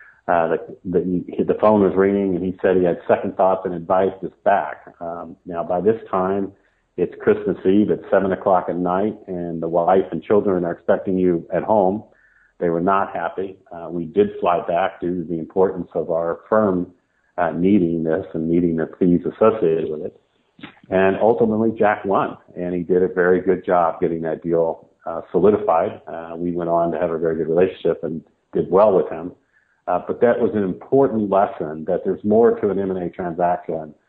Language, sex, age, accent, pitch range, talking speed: English, male, 50-69, American, 85-95 Hz, 195 wpm